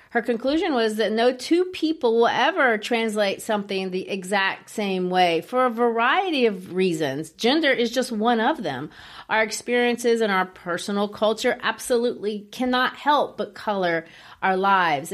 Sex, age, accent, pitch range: female, 40-59, American, 190-235 Hz